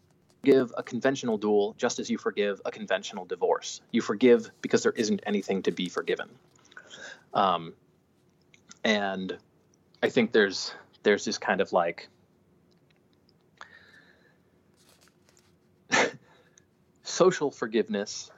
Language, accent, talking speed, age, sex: English, American, 105 wpm, 20-39, male